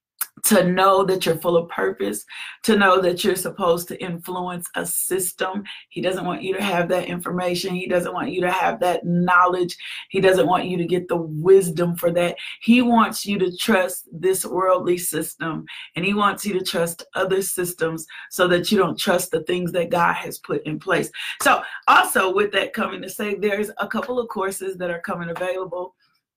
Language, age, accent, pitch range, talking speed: English, 40-59, American, 175-200 Hz, 200 wpm